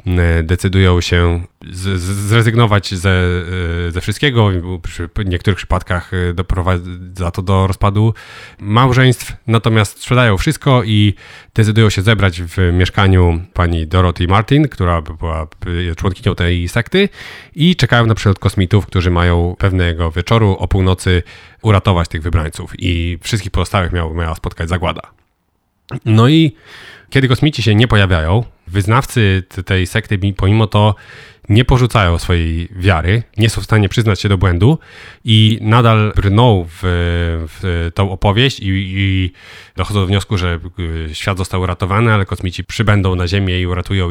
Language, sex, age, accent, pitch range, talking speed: Polish, male, 30-49, native, 90-110 Hz, 135 wpm